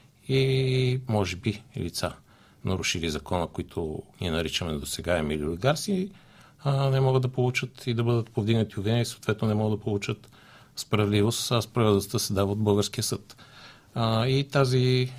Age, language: 50-69, English